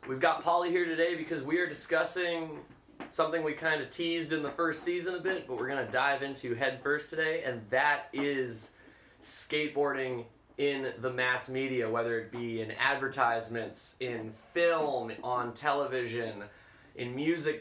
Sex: male